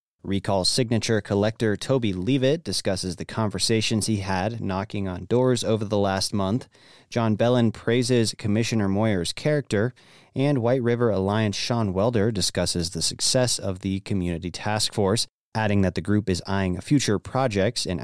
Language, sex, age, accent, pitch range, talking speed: English, male, 30-49, American, 95-115 Hz, 155 wpm